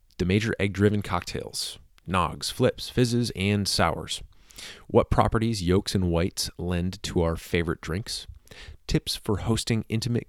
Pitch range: 85-105 Hz